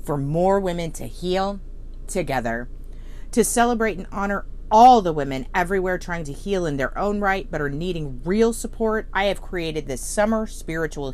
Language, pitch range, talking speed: English, 140-185 Hz, 170 wpm